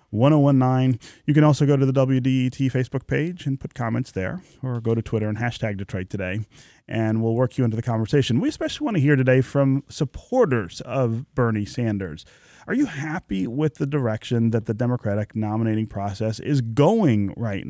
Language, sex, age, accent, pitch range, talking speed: English, male, 30-49, American, 105-135 Hz, 195 wpm